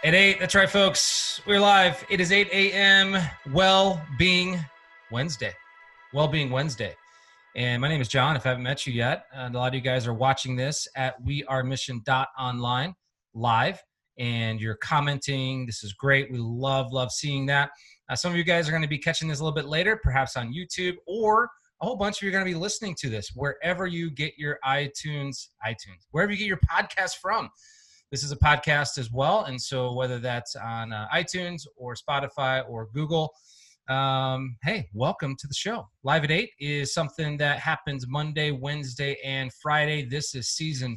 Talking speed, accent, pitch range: 190 wpm, American, 130-165 Hz